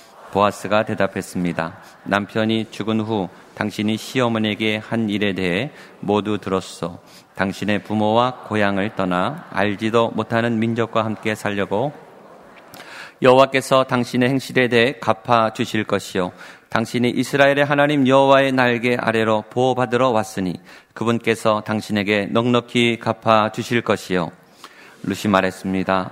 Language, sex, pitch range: Korean, male, 100-120 Hz